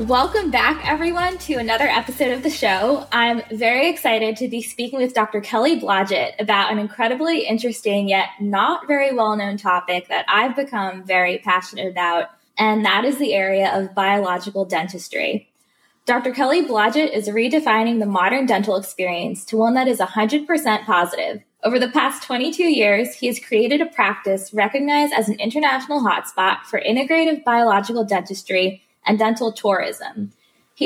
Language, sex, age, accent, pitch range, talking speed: English, female, 20-39, American, 200-265 Hz, 155 wpm